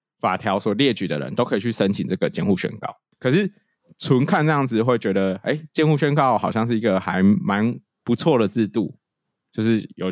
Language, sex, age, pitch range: Chinese, male, 20-39, 105-135 Hz